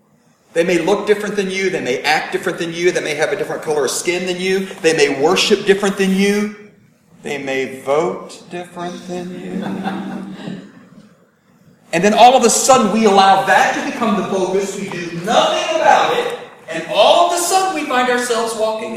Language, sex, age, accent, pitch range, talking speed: English, male, 40-59, American, 170-240 Hz, 195 wpm